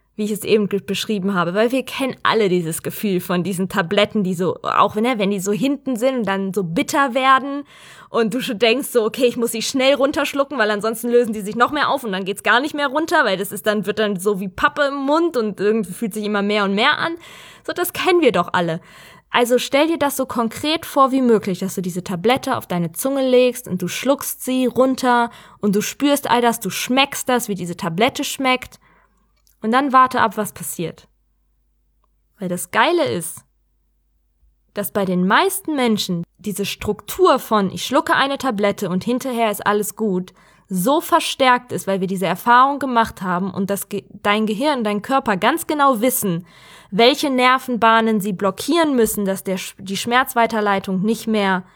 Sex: female